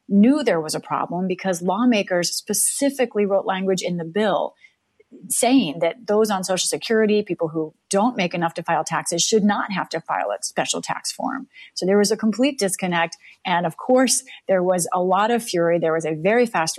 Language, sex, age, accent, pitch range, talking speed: English, female, 30-49, American, 160-205 Hz, 200 wpm